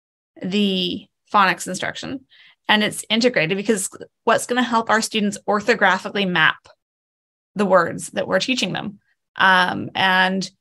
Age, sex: 20-39, female